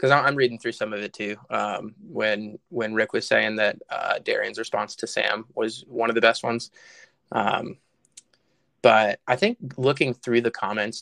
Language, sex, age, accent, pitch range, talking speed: English, male, 20-39, American, 115-140 Hz, 185 wpm